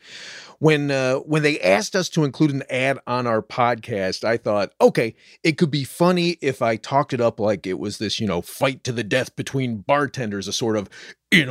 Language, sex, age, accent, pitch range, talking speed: English, male, 40-59, American, 110-150 Hz, 215 wpm